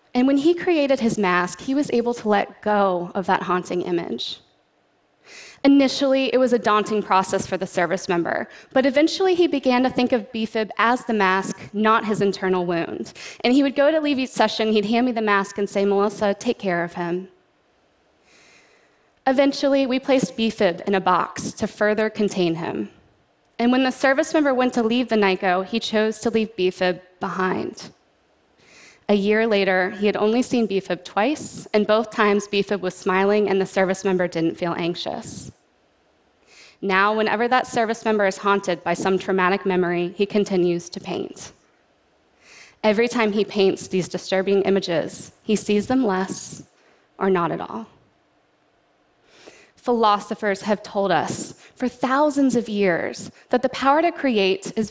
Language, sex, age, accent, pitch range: Chinese, female, 20-39, American, 190-240 Hz